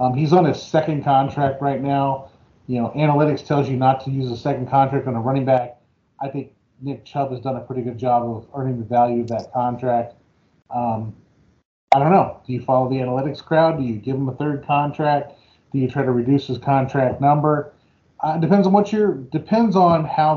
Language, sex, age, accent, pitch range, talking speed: English, male, 30-49, American, 125-155 Hz, 215 wpm